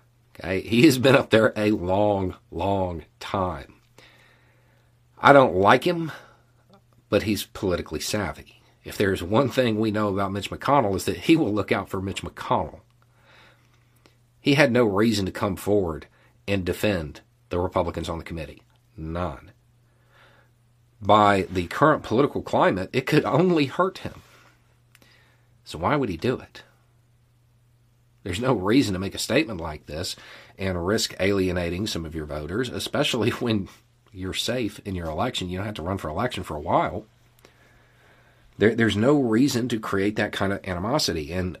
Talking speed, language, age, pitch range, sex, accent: 160 wpm, English, 40-59, 95-120 Hz, male, American